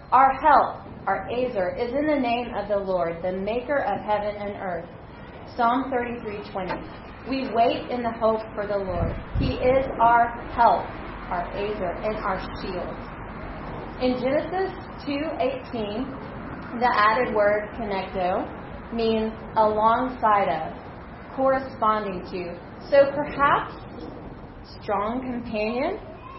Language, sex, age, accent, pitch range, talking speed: English, female, 30-49, American, 205-260 Hz, 125 wpm